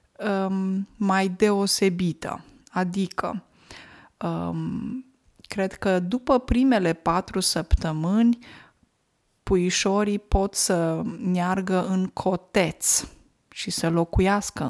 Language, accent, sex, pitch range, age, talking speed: Romanian, native, female, 180-235 Hz, 20-39, 75 wpm